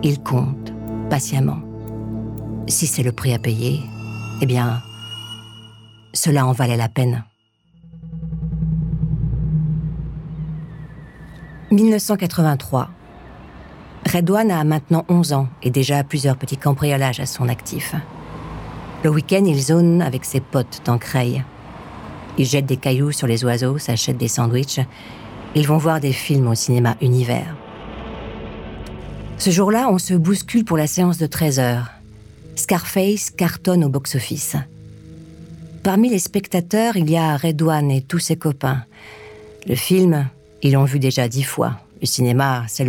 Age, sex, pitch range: 50-69, female, 120-160 Hz